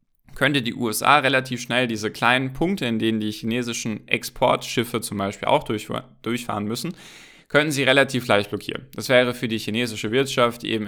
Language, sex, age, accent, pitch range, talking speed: German, male, 10-29, German, 105-125 Hz, 170 wpm